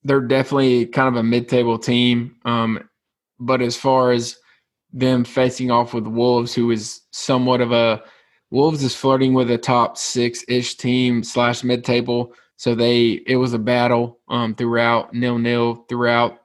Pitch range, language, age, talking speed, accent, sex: 115-125 Hz, English, 20-39, 160 wpm, American, male